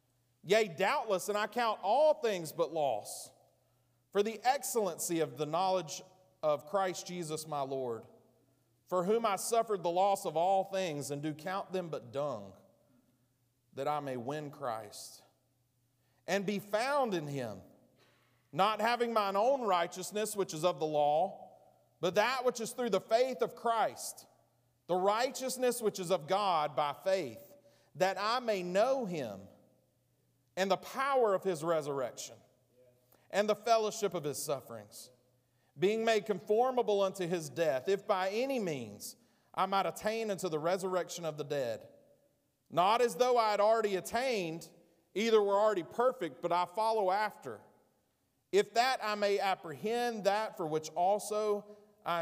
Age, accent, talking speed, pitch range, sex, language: 40-59, American, 155 wpm, 140-210 Hz, male, English